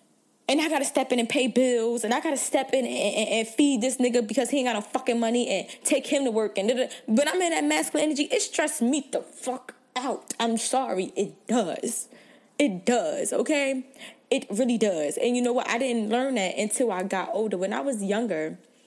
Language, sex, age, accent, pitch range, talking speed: English, female, 20-39, American, 215-265 Hz, 240 wpm